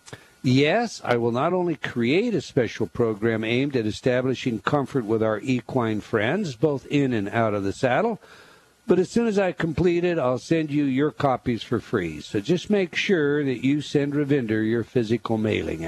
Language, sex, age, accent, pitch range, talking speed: English, male, 60-79, American, 125-170 Hz, 185 wpm